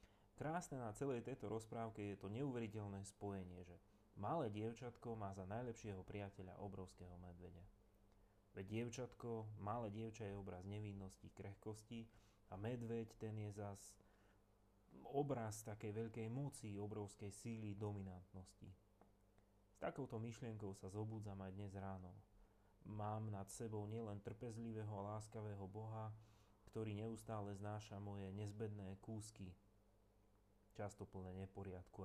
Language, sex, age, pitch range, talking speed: Slovak, male, 30-49, 100-110 Hz, 120 wpm